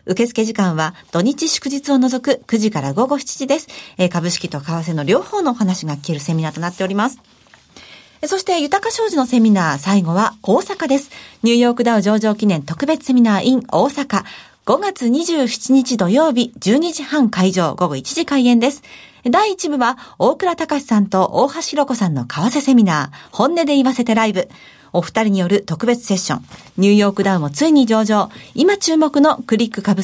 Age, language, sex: 40-59, Japanese, female